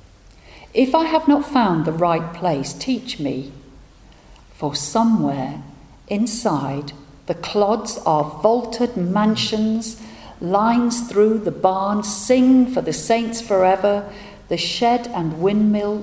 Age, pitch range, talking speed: 50-69, 150-200 Hz, 115 wpm